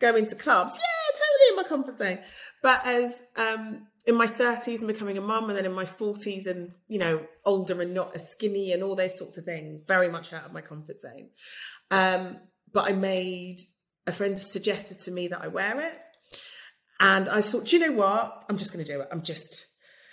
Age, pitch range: 30-49, 180-235 Hz